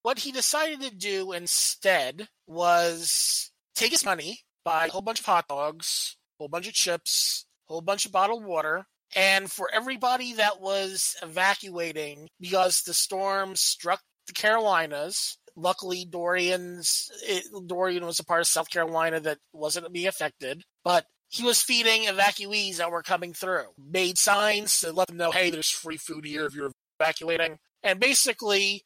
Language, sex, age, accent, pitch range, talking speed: English, male, 30-49, American, 170-210 Hz, 165 wpm